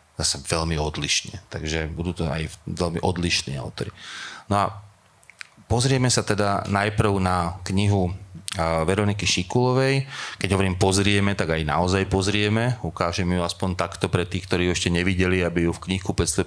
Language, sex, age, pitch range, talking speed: Slovak, male, 30-49, 90-105 Hz, 155 wpm